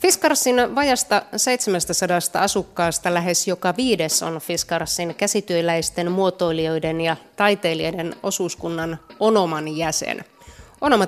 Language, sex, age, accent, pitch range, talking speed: Finnish, female, 30-49, native, 170-210 Hz, 90 wpm